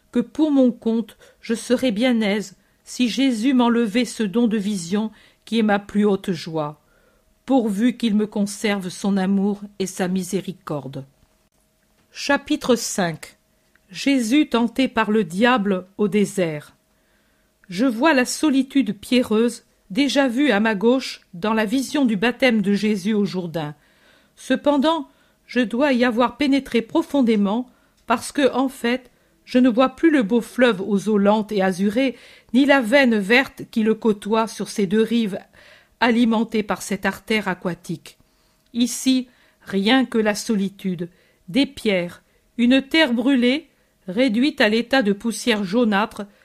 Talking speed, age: 145 wpm, 50-69